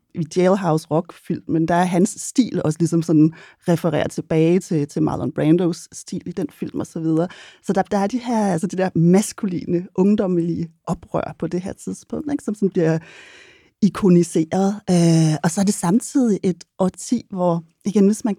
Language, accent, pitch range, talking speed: Danish, native, 165-205 Hz, 185 wpm